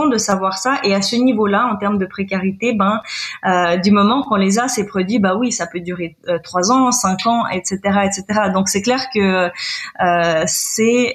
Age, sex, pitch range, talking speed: 20-39, female, 185-210 Hz, 205 wpm